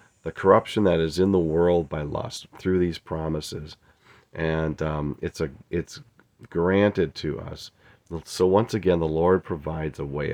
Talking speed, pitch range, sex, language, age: 165 wpm, 80-100 Hz, male, English, 40-59